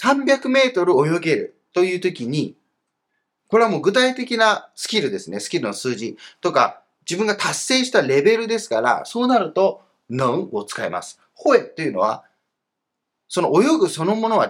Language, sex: Japanese, male